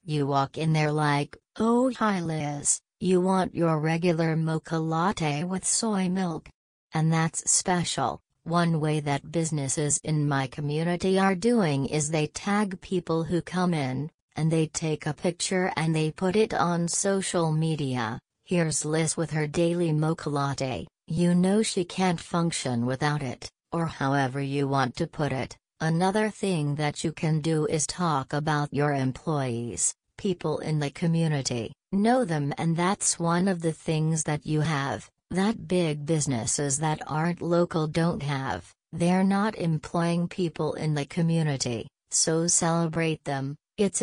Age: 40-59